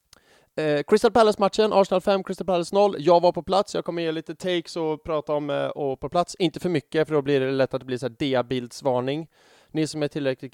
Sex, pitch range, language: male, 125-180 Hz, English